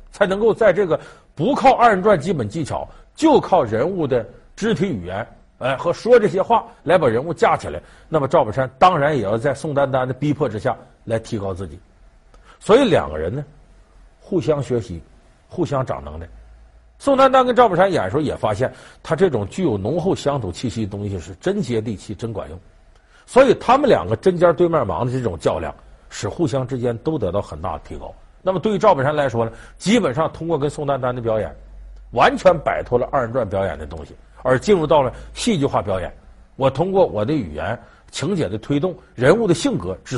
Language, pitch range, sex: Chinese, 95-150 Hz, male